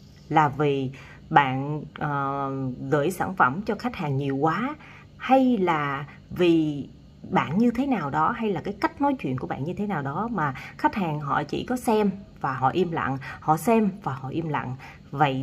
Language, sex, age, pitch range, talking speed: Vietnamese, female, 20-39, 140-205 Hz, 195 wpm